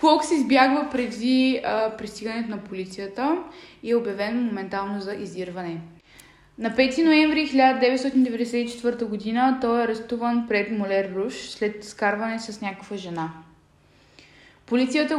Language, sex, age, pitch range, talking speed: Bulgarian, female, 20-39, 210-260 Hz, 120 wpm